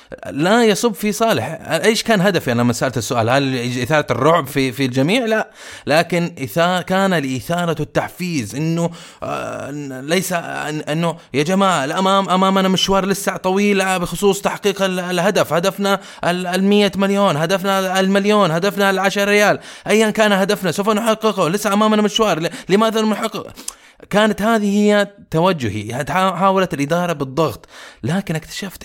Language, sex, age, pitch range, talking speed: Arabic, male, 20-39, 140-205 Hz, 135 wpm